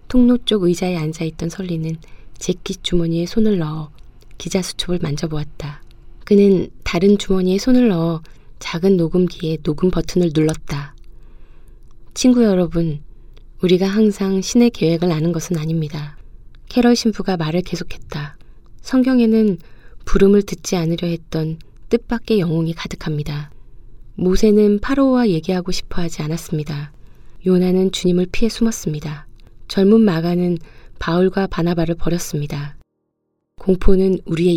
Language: Korean